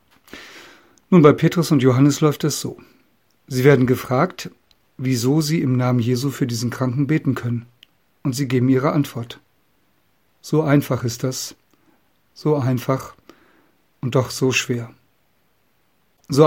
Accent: German